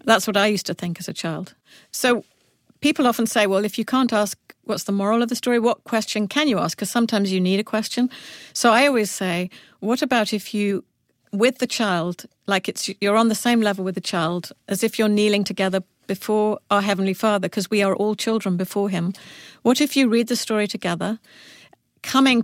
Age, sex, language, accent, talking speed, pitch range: 50-69, female, English, British, 215 wpm, 190-230 Hz